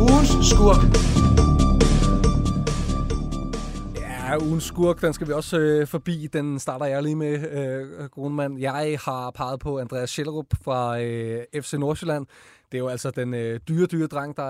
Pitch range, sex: 120-145 Hz, male